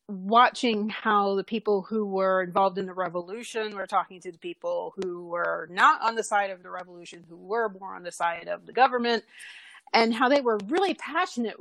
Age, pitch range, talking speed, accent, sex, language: 30-49, 185-230 Hz, 200 wpm, American, female, English